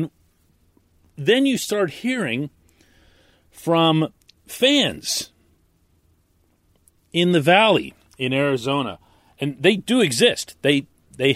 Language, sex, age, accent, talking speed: English, male, 40-59, American, 90 wpm